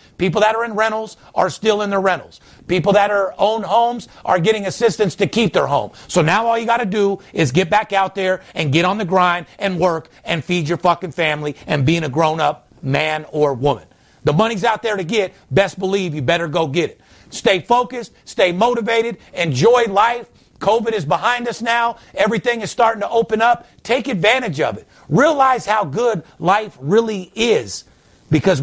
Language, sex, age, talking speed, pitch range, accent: English, male, 50-69, 195 wpm, 180-220 Hz, American